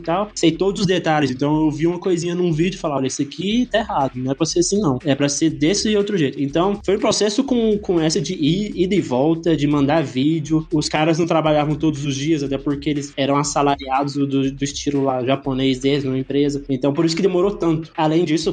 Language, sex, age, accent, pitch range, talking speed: Portuguese, male, 20-39, Brazilian, 140-175 Hz, 245 wpm